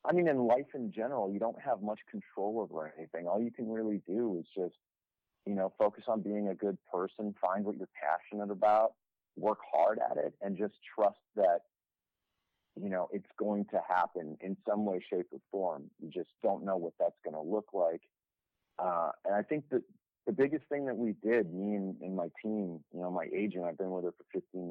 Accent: American